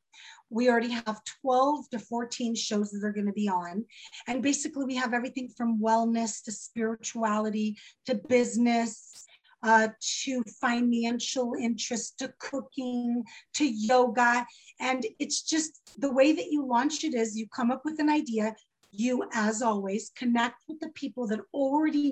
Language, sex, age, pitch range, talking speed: English, female, 30-49, 225-275 Hz, 155 wpm